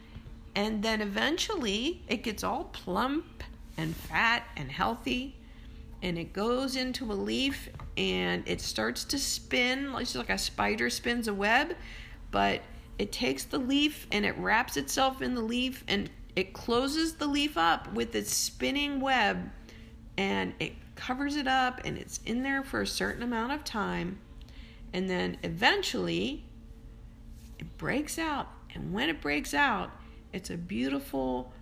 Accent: American